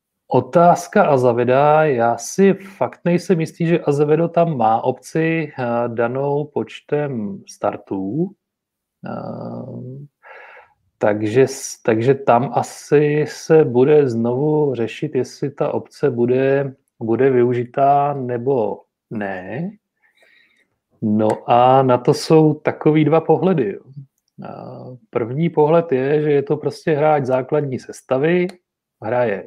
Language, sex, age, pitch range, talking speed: Czech, male, 30-49, 120-155 Hz, 105 wpm